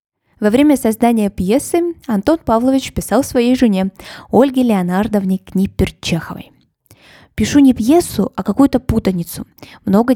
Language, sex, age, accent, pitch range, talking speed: Russian, female, 20-39, native, 195-260 Hz, 110 wpm